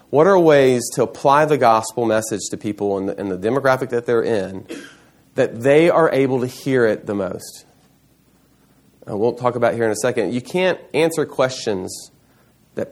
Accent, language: American, English